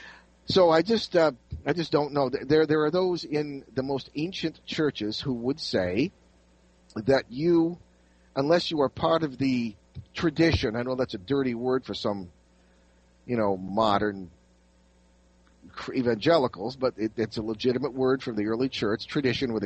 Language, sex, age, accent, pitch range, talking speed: English, male, 50-69, American, 100-145 Hz, 160 wpm